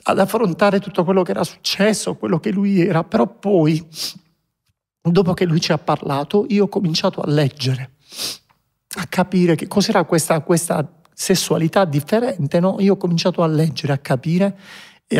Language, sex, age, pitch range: Italian, male, 50-69, 135-175 Hz